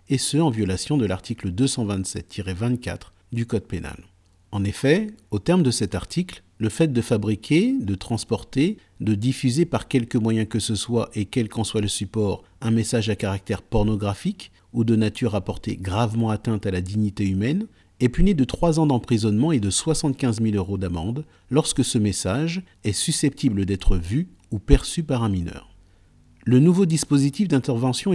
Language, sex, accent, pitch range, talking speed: French, male, French, 100-135 Hz, 175 wpm